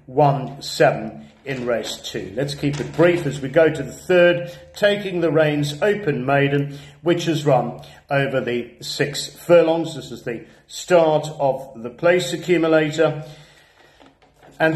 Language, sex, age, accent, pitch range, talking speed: English, male, 50-69, British, 130-160 Hz, 140 wpm